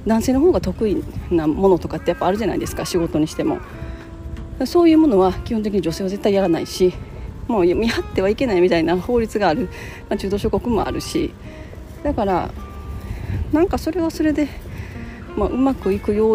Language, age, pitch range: Japanese, 40-59, 165-255 Hz